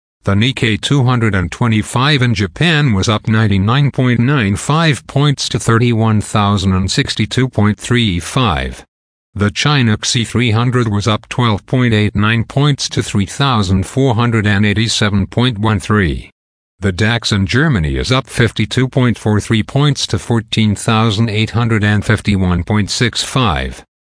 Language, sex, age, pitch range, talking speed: English, male, 50-69, 100-125 Hz, 75 wpm